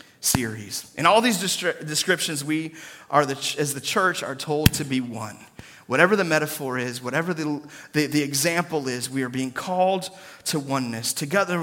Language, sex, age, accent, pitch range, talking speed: English, male, 30-49, American, 130-155 Hz, 165 wpm